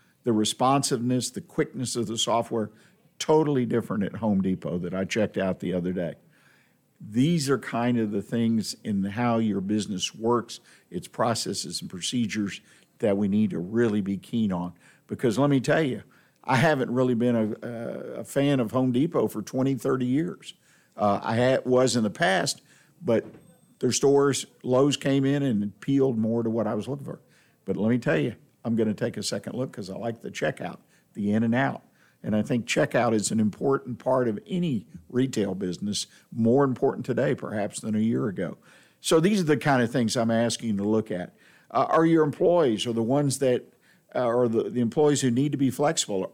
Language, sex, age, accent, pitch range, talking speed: English, male, 50-69, American, 105-135 Hz, 200 wpm